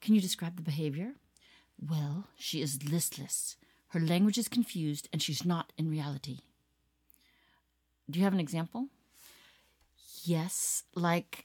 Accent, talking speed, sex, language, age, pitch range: American, 130 wpm, female, English, 40-59, 150-215 Hz